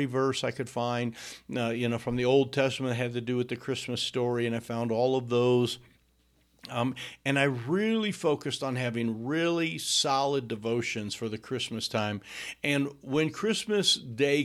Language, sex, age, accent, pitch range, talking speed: English, male, 60-79, American, 110-135 Hz, 180 wpm